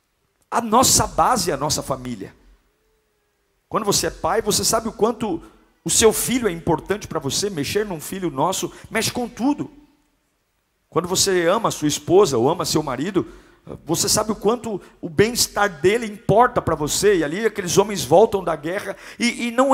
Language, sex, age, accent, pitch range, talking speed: Portuguese, male, 50-69, Brazilian, 150-215 Hz, 180 wpm